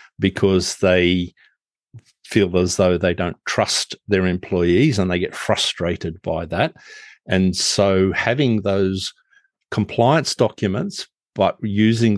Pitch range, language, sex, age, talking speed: 95-110 Hz, English, male, 50-69, 120 wpm